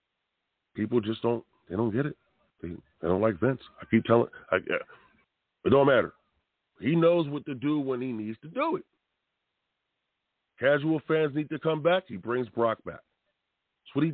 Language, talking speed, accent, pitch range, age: English, 185 wpm, American, 100-160 Hz, 40-59